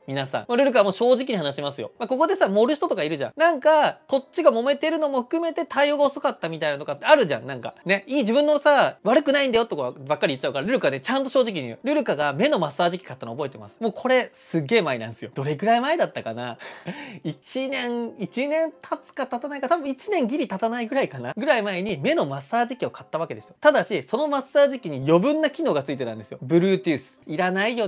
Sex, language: male, Japanese